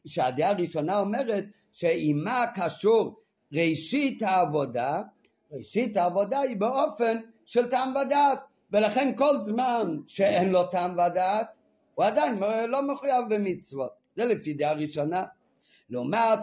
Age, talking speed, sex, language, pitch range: 50-69, 115 wpm, male, Hebrew, 155-225 Hz